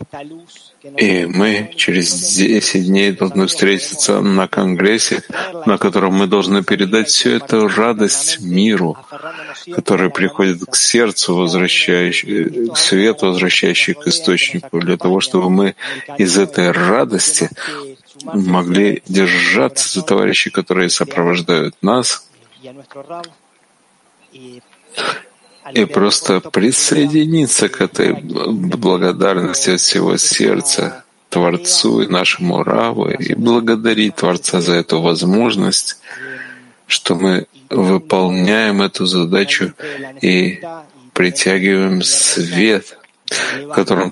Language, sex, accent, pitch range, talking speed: Russian, male, native, 95-135 Hz, 95 wpm